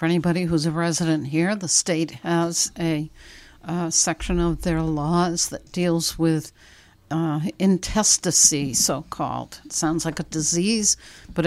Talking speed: 140 wpm